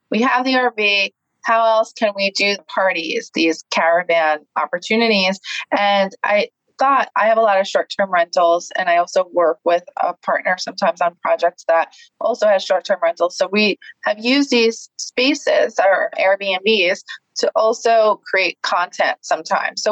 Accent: American